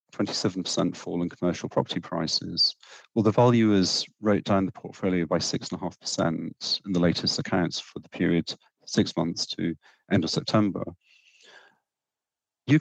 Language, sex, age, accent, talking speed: English, male, 40-59, British, 130 wpm